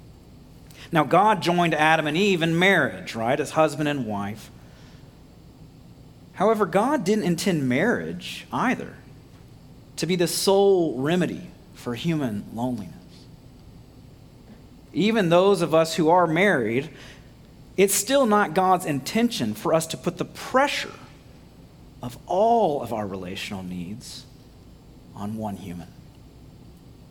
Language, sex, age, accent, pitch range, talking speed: English, male, 40-59, American, 130-195 Hz, 120 wpm